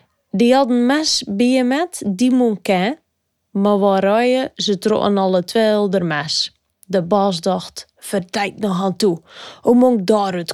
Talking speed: 160 wpm